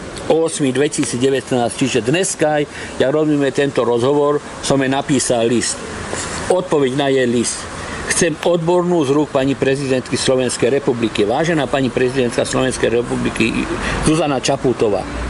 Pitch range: 125-150 Hz